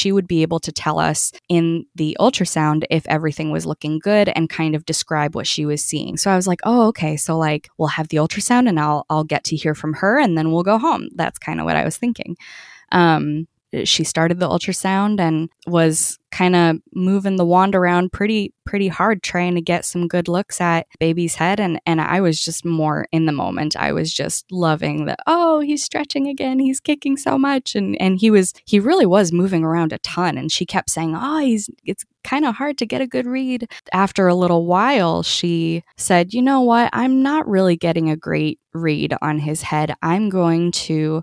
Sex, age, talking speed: female, 10-29, 220 wpm